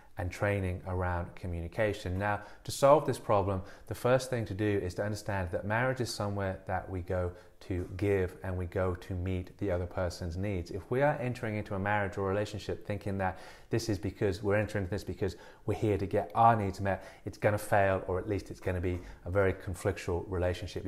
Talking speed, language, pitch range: 210 wpm, English, 90-105 Hz